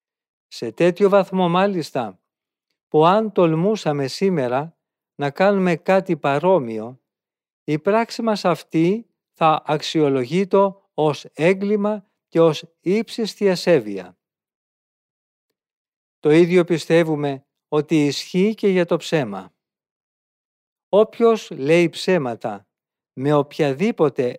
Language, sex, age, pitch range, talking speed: Greek, male, 50-69, 150-195 Hz, 95 wpm